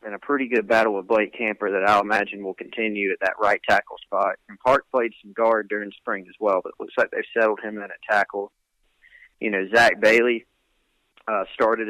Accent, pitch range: American, 105-120 Hz